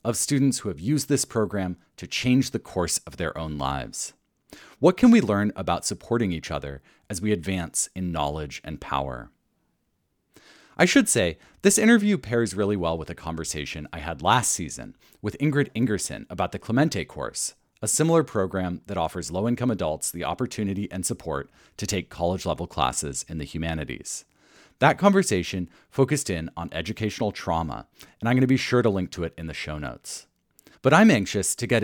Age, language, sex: 40-59, English, male